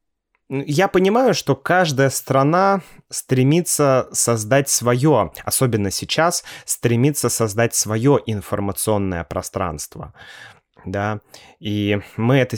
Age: 20-39